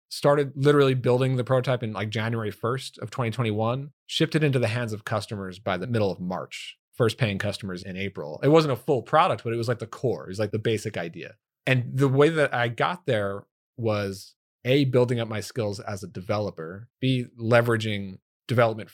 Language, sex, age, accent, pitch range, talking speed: English, male, 40-59, American, 100-130 Hz, 205 wpm